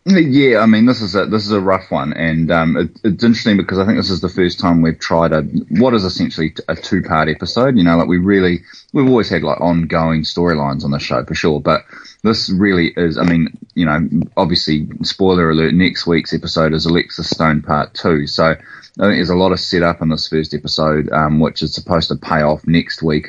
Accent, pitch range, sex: Australian, 80-90 Hz, male